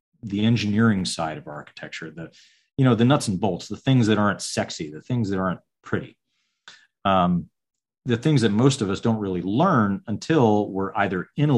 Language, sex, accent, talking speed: English, male, American, 190 wpm